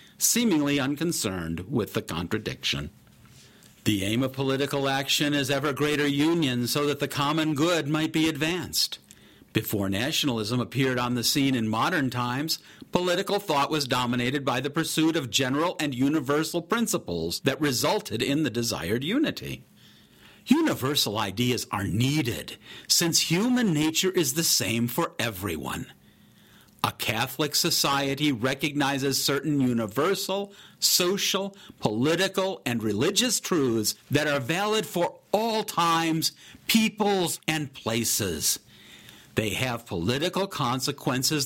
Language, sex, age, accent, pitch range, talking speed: English, male, 50-69, American, 125-175 Hz, 125 wpm